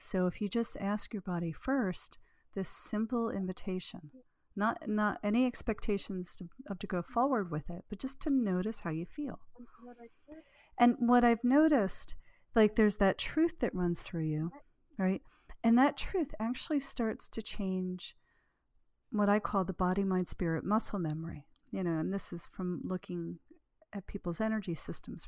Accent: American